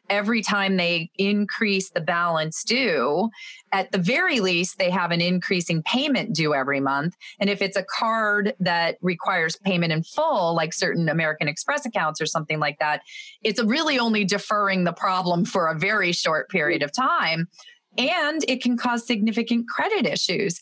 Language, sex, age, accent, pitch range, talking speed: English, female, 30-49, American, 160-215 Hz, 170 wpm